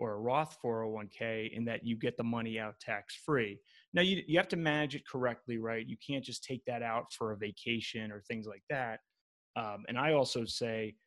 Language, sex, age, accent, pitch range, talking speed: English, male, 30-49, American, 115-140 Hz, 210 wpm